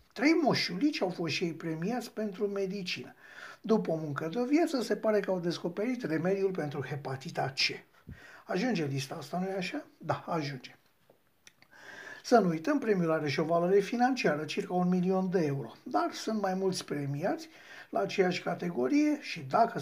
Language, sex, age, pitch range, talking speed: Romanian, male, 60-79, 155-210 Hz, 165 wpm